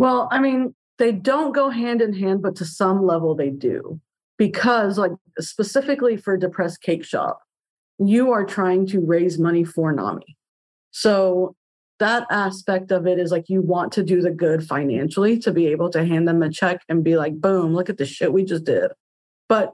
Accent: American